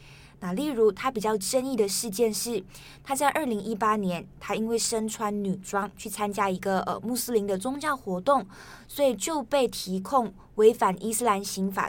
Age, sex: 20-39, female